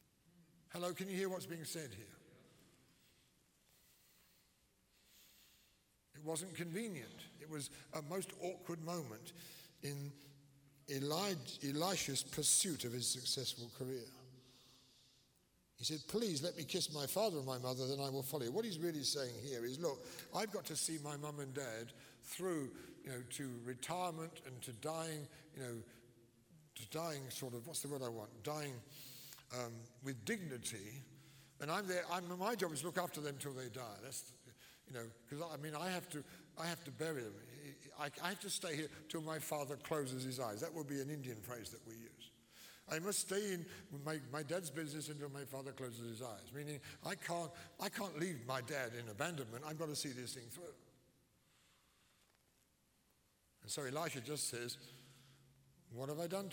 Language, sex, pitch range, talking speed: English, male, 130-165 Hz, 175 wpm